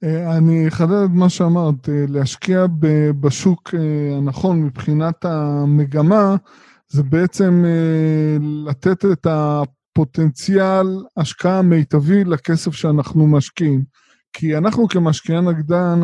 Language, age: Hebrew, 20-39